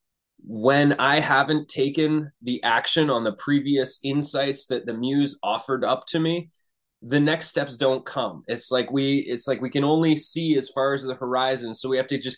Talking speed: 200 wpm